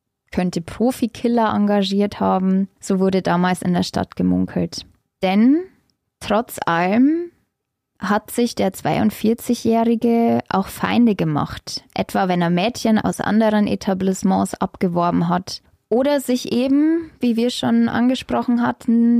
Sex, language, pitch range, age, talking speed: female, German, 180-235 Hz, 20-39, 120 wpm